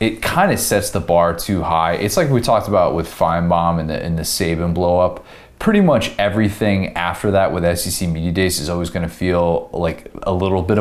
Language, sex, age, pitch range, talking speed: English, male, 20-39, 85-100 Hz, 235 wpm